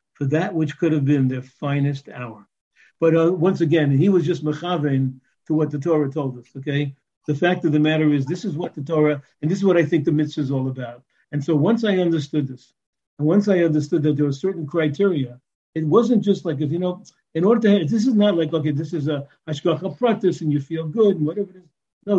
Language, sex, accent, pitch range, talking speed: English, male, American, 145-180 Hz, 245 wpm